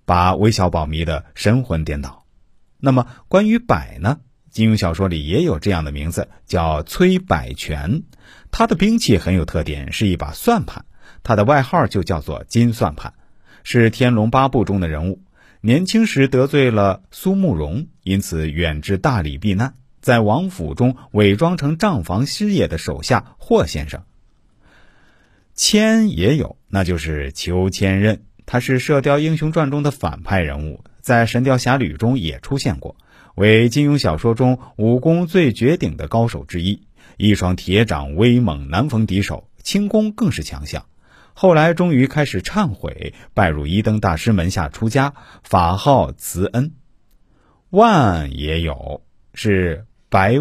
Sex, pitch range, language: male, 85-135 Hz, Chinese